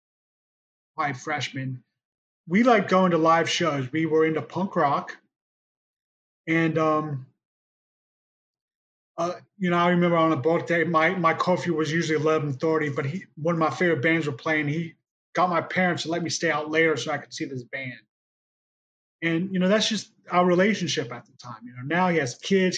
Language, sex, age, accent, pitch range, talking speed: English, male, 30-49, American, 145-170 Hz, 185 wpm